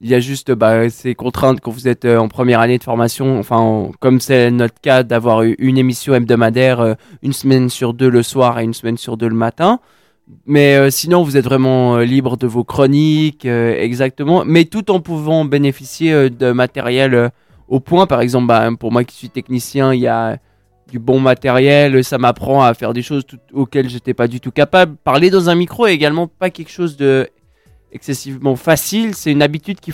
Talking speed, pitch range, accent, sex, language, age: 220 wpm, 125-160 Hz, French, male, French, 20-39